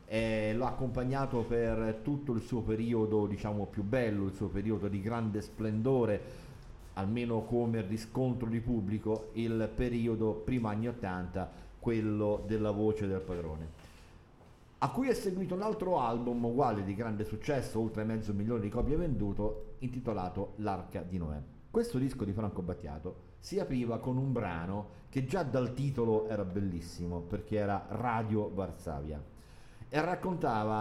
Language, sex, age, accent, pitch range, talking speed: Italian, male, 40-59, native, 105-125 Hz, 150 wpm